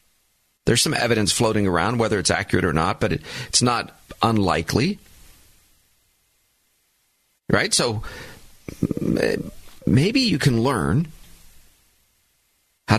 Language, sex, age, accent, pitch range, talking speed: English, male, 40-59, American, 95-125 Hz, 100 wpm